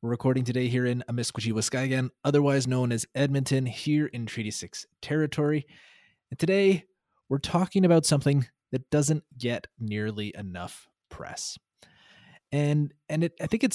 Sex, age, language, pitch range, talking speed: male, 20-39, English, 110-145 Hz, 145 wpm